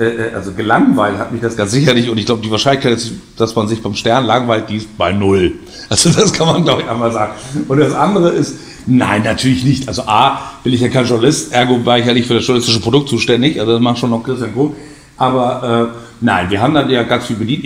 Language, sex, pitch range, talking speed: German, male, 115-135 Hz, 240 wpm